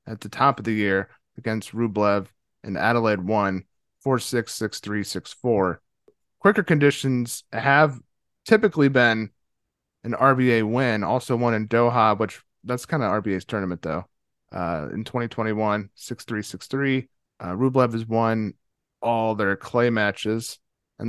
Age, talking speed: 30-49, 150 wpm